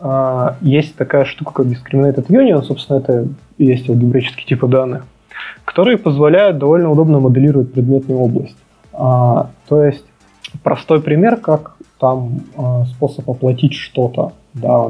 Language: Russian